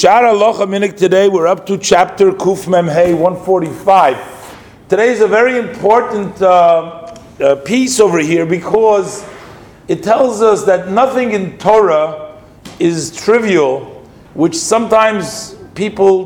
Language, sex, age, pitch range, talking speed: English, male, 50-69, 170-215 Hz, 115 wpm